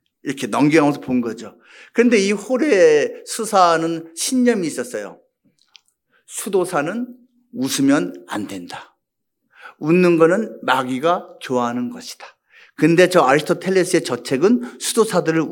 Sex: male